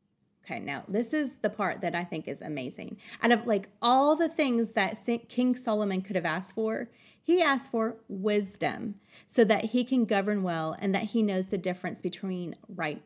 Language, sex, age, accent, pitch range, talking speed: English, female, 30-49, American, 200-265 Hz, 195 wpm